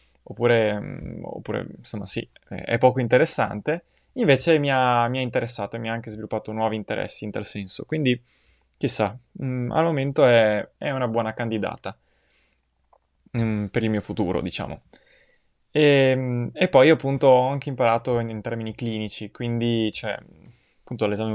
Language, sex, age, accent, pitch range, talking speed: Italian, male, 20-39, native, 105-125 Hz, 150 wpm